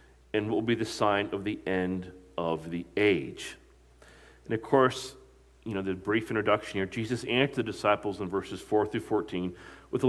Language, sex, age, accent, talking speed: English, male, 40-59, American, 190 wpm